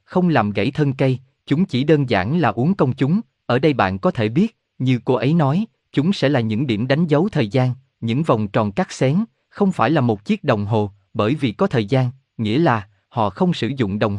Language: Vietnamese